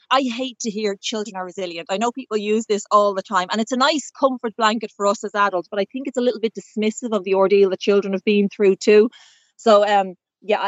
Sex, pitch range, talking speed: female, 195-230 Hz, 255 wpm